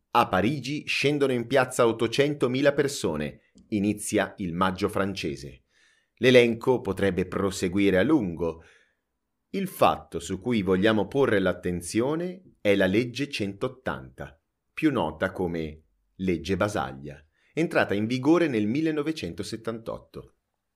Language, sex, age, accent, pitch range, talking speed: Italian, male, 30-49, native, 90-115 Hz, 105 wpm